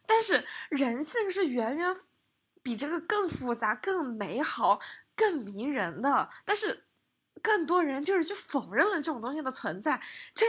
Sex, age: female, 20-39